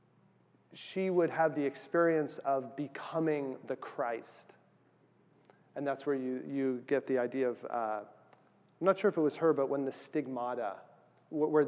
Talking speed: 160 wpm